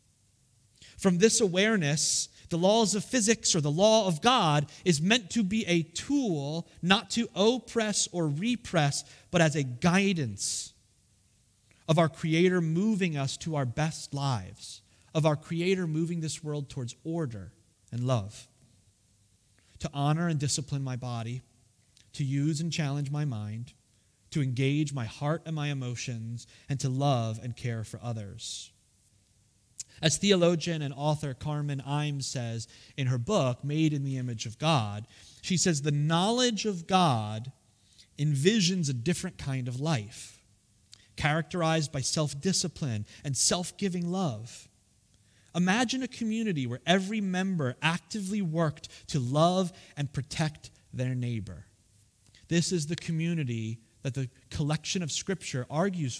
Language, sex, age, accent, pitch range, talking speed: English, male, 30-49, American, 115-170 Hz, 140 wpm